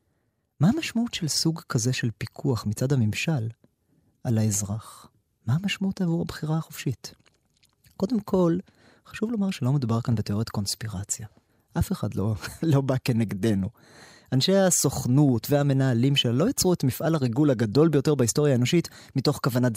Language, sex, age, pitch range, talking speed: Hebrew, male, 30-49, 115-155 Hz, 140 wpm